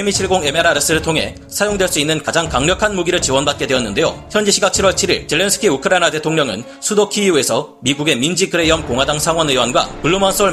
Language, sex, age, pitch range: Korean, male, 40-59, 145-195 Hz